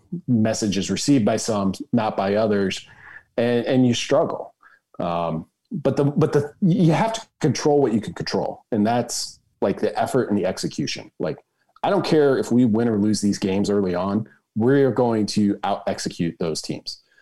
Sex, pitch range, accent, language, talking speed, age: male, 100-130 Hz, American, English, 180 wpm, 40-59